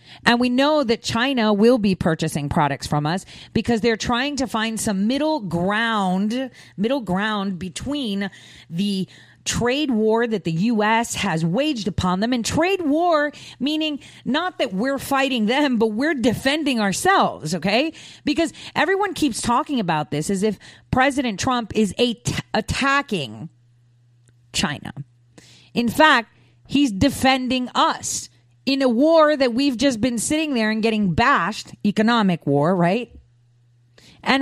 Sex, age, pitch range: female, 40-59, 170-265 Hz